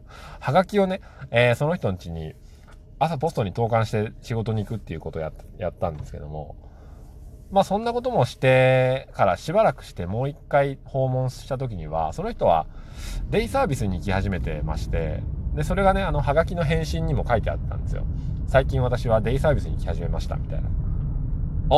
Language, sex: Japanese, male